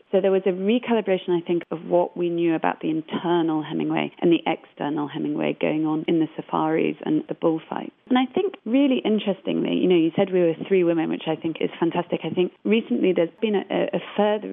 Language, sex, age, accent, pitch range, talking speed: English, female, 30-49, British, 165-190 Hz, 220 wpm